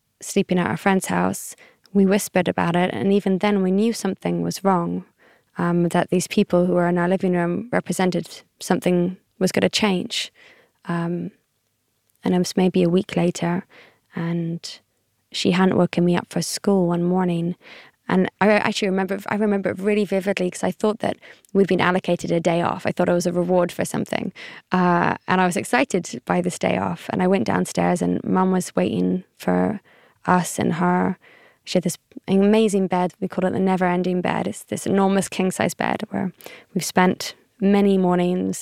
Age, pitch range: 20-39, 175-195 Hz